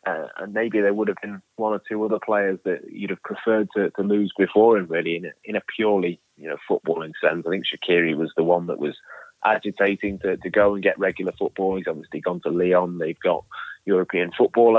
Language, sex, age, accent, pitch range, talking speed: English, male, 30-49, British, 90-105 Hz, 225 wpm